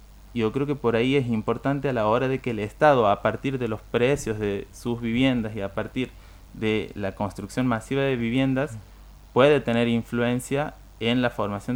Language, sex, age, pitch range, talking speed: Spanish, male, 30-49, 100-125 Hz, 190 wpm